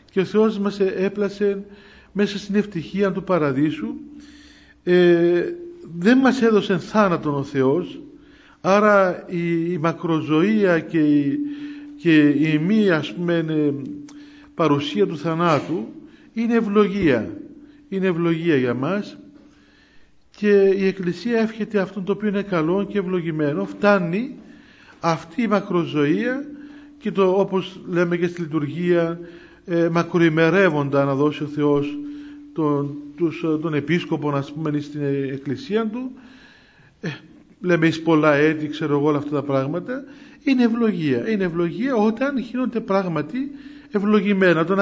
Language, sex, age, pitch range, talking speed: Greek, male, 50-69, 160-225 Hz, 120 wpm